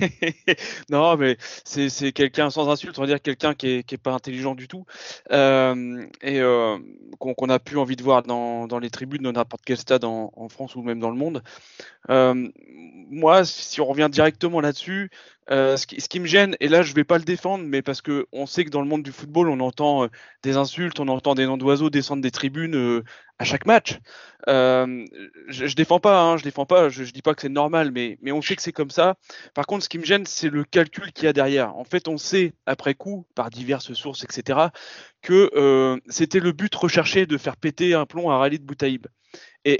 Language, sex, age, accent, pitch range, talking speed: French, male, 20-39, French, 130-170 Hz, 240 wpm